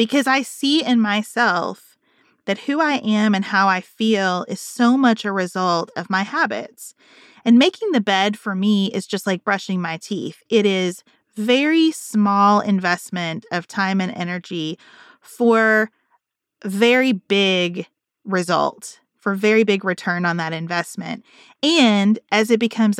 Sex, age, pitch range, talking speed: female, 20-39, 190-245 Hz, 150 wpm